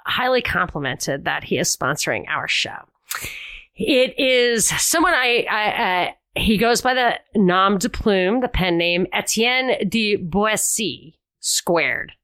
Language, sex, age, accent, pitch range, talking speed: English, female, 40-59, American, 180-245 Hz, 135 wpm